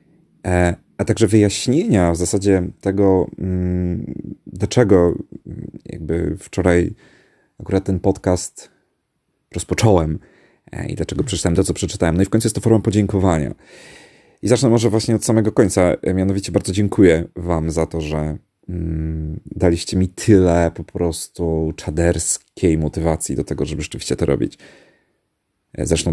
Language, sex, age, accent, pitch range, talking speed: Polish, male, 30-49, native, 80-100 Hz, 125 wpm